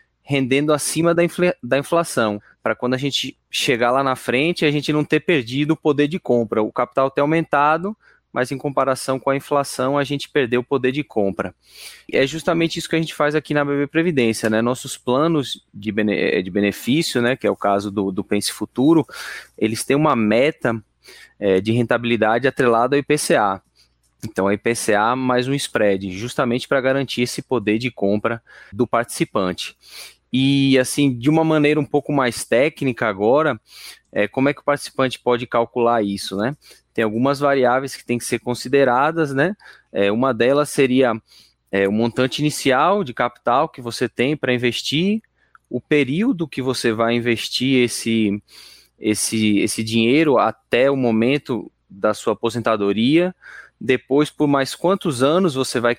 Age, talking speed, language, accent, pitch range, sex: 20-39, 170 wpm, Portuguese, Brazilian, 115-145 Hz, male